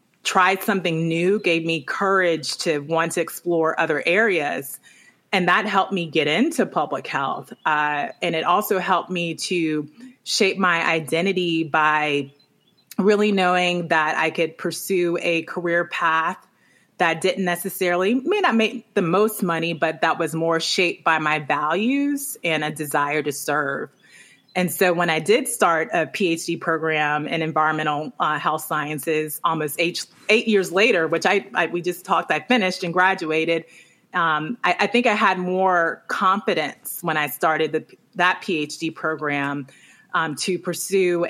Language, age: English, 30-49